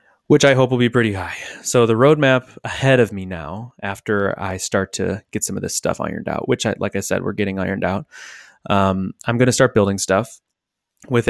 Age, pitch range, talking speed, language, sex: 20-39, 95-115 Hz, 220 wpm, English, male